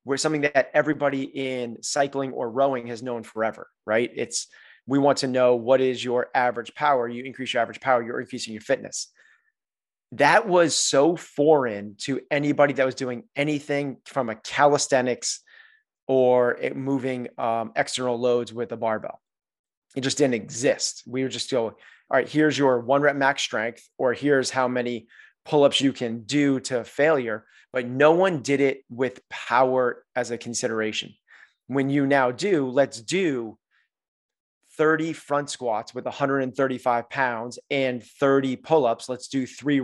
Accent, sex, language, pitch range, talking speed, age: American, male, English, 125-145 Hz, 160 wpm, 30-49